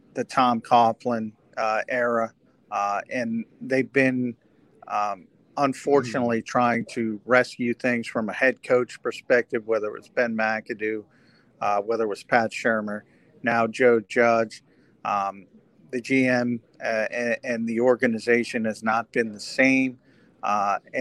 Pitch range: 115-130 Hz